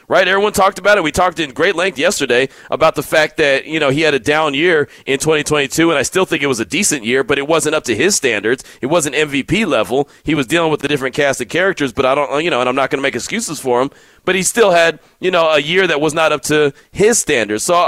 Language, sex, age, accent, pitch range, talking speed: English, male, 30-49, American, 140-180 Hz, 280 wpm